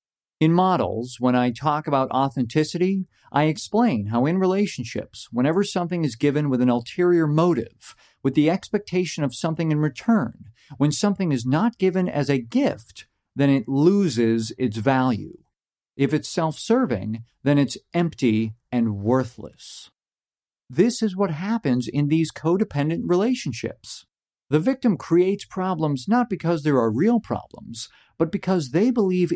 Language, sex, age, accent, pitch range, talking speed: English, male, 50-69, American, 125-185 Hz, 145 wpm